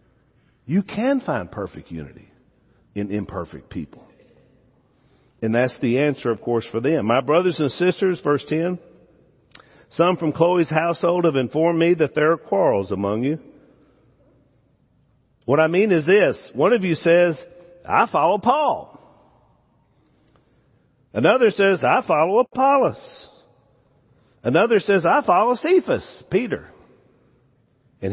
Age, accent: 50-69, American